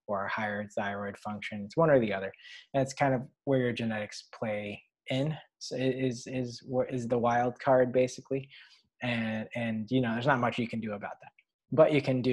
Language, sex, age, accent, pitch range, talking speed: English, male, 20-39, American, 110-130 Hz, 210 wpm